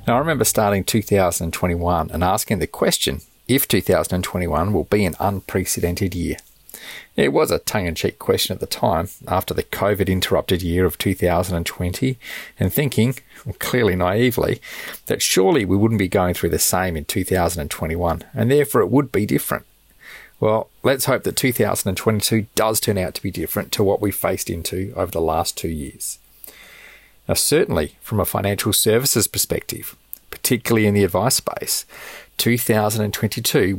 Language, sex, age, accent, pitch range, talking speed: English, male, 30-49, Australian, 95-115 Hz, 150 wpm